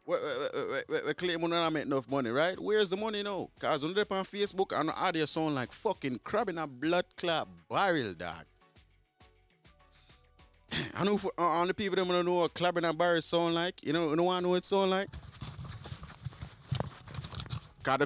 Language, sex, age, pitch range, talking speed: English, male, 30-49, 125-180 Hz, 175 wpm